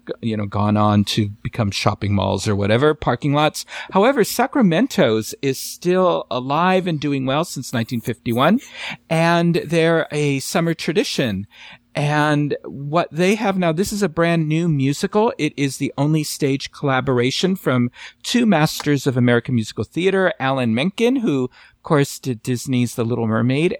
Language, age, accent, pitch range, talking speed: English, 50-69, American, 125-165 Hz, 155 wpm